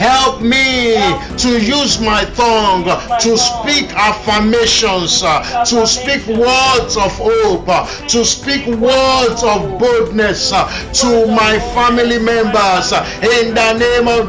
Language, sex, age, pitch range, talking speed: English, male, 50-69, 230-260 Hz, 115 wpm